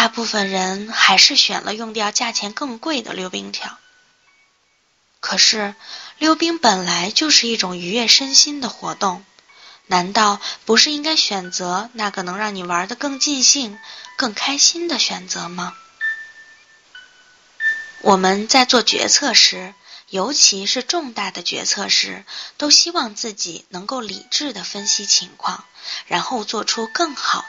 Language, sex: Chinese, female